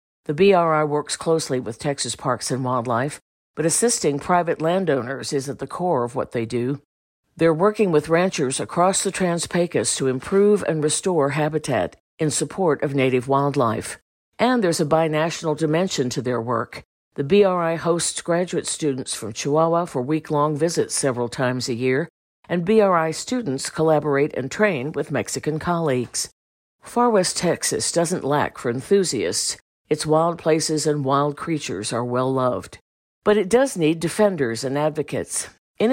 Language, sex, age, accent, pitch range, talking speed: English, female, 50-69, American, 135-175 Hz, 155 wpm